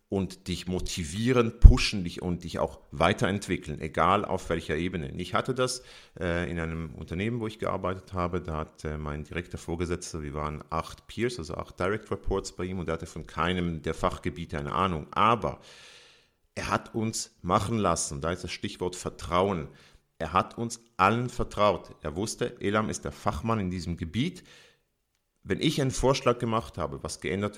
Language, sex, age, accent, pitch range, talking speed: German, male, 40-59, German, 80-105 Hz, 175 wpm